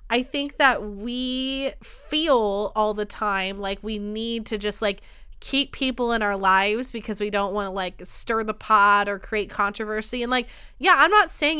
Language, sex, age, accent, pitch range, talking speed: English, female, 20-39, American, 200-250 Hz, 190 wpm